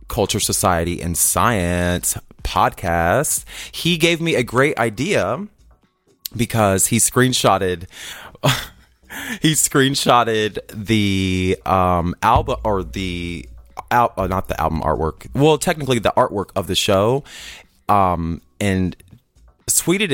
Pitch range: 95-125 Hz